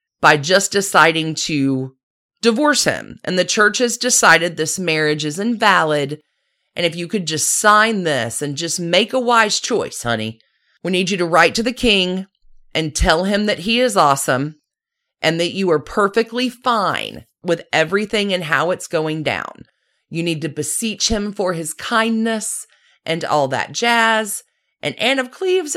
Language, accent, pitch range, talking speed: English, American, 165-230 Hz, 170 wpm